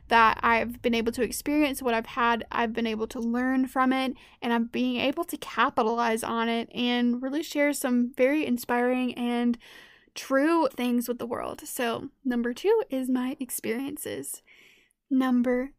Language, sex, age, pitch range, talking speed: English, female, 10-29, 240-285 Hz, 165 wpm